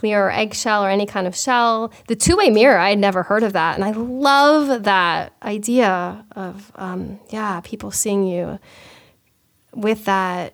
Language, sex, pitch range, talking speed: English, female, 190-240 Hz, 165 wpm